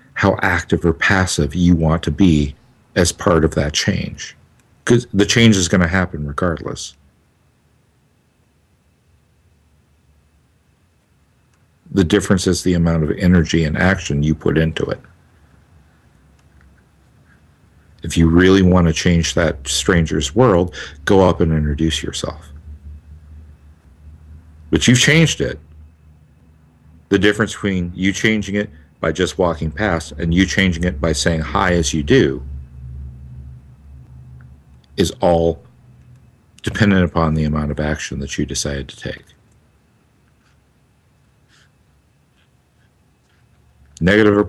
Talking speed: 115 wpm